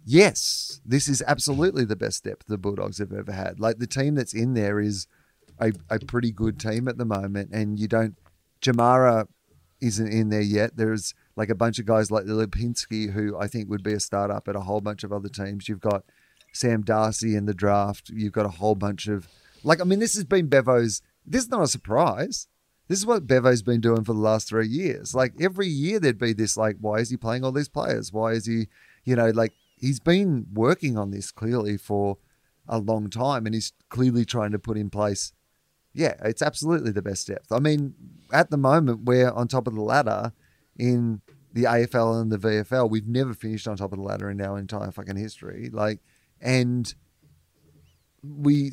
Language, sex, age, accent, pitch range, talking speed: English, male, 30-49, Australian, 105-130 Hz, 210 wpm